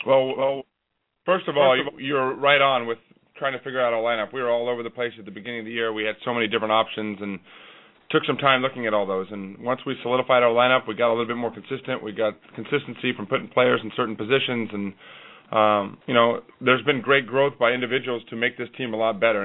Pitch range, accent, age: 110-125 Hz, American, 30-49